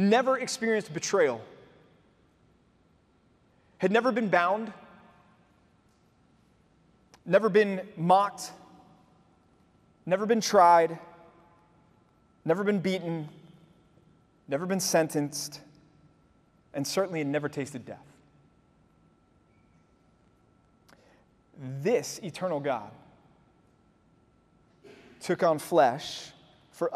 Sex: male